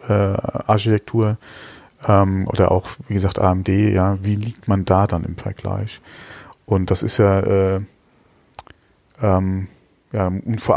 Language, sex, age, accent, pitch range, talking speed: German, male, 40-59, German, 95-110 Hz, 140 wpm